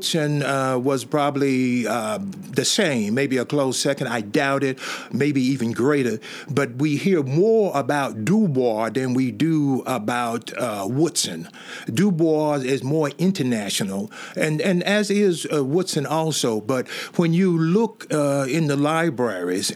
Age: 50-69